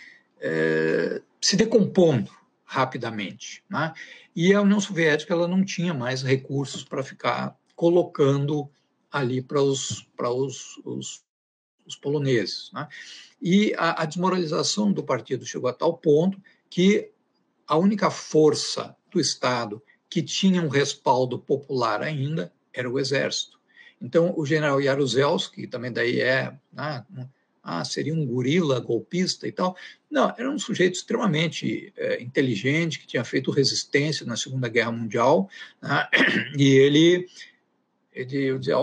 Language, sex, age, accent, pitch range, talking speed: Portuguese, male, 60-79, Brazilian, 135-185 Hz, 135 wpm